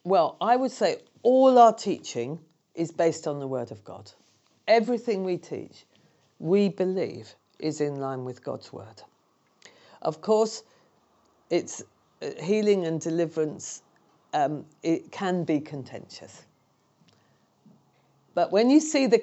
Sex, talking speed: female, 130 wpm